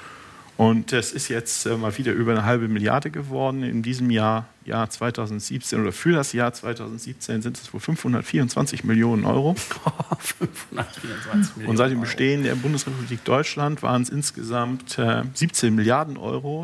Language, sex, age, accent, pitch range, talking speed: German, male, 40-59, German, 110-135 Hz, 145 wpm